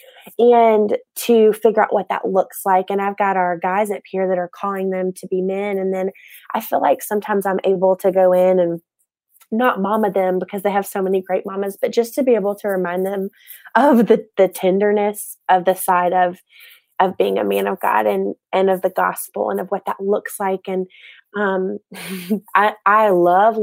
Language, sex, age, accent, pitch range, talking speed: English, female, 20-39, American, 185-225 Hz, 210 wpm